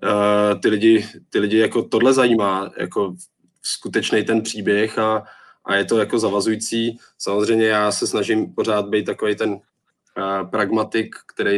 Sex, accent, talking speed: male, native, 150 wpm